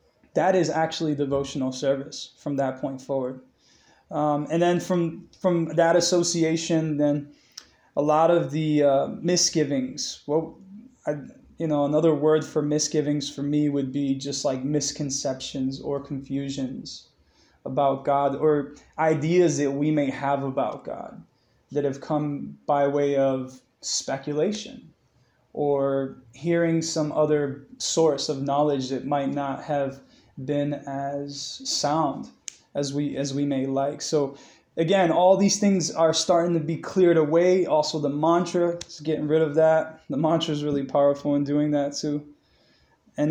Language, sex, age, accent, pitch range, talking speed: English, male, 20-39, American, 140-160 Hz, 145 wpm